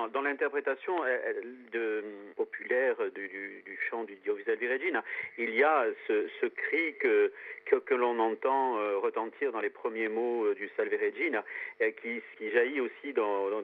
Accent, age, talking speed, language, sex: French, 50-69, 165 wpm, French, male